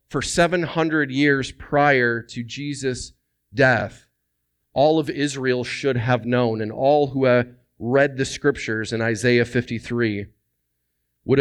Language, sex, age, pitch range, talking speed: English, male, 40-59, 110-140 Hz, 125 wpm